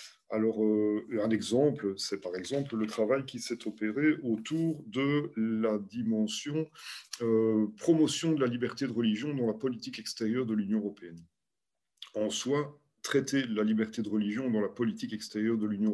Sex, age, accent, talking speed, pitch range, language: male, 40-59, French, 160 wpm, 105-140 Hz, French